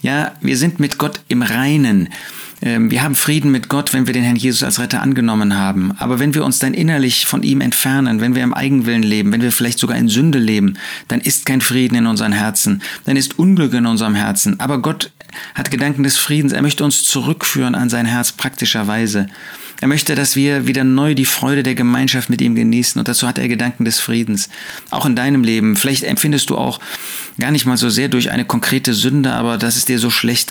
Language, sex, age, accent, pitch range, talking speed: German, male, 40-59, German, 115-140 Hz, 220 wpm